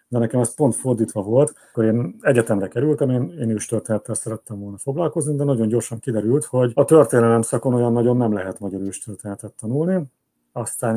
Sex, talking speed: male, 175 wpm